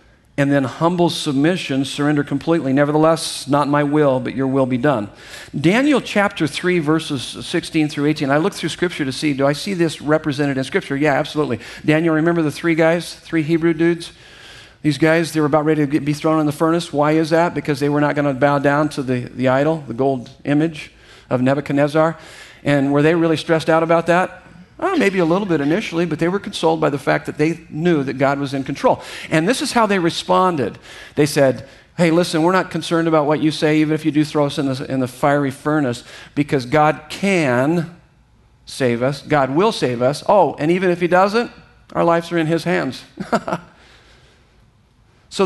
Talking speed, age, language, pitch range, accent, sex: 205 wpm, 50-69, English, 140-170 Hz, American, male